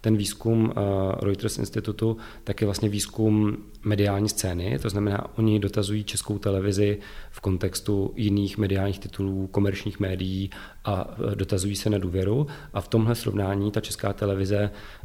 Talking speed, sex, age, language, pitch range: 140 wpm, male, 40-59, Czech, 95-105 Hz